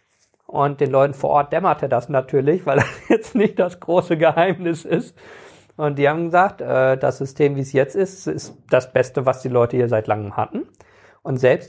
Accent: German